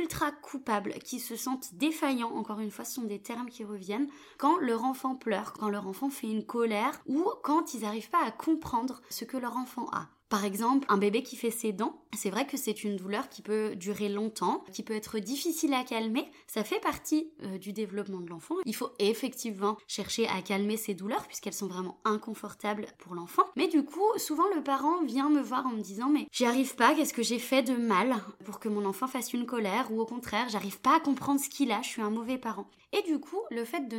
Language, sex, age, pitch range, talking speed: French, female, 20-39, 215-285 Hz, 235 wpm